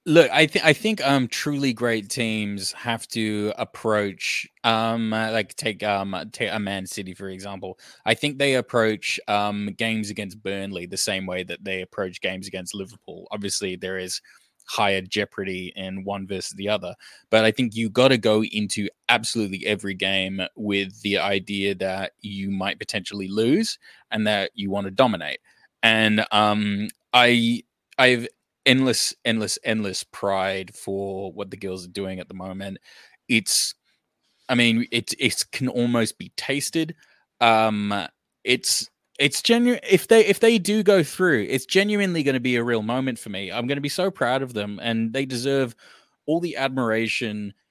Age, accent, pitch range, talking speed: 20-39, Australian, 100-125 Hz, 170 wpm